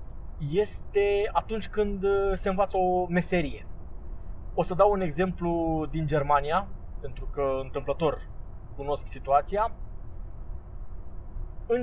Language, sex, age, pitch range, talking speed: Romanian, male, 20-39, 120-185 Hz, 100 wpm